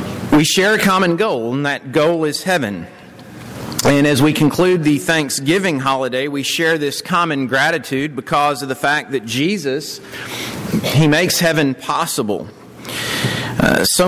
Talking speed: 145 wpm